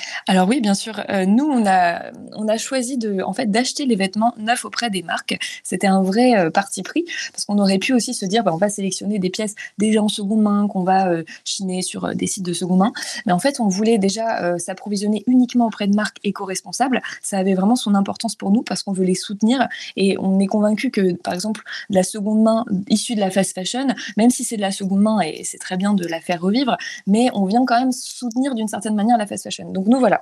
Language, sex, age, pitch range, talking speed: French, female, 20-39, 195-245 Hz, 250 wpm